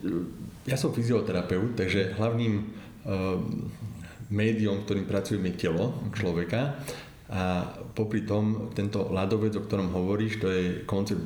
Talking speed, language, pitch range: 125 wpm, Slovak, 95-110 Hz